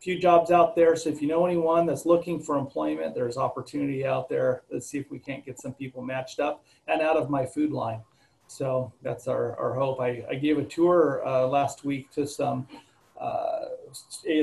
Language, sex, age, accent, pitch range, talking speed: English, male, 40-59, American, 125-150 Hz, 205 wpm